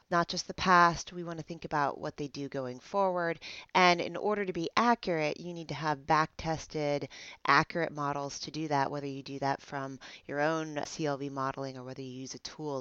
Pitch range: 140-190 Hz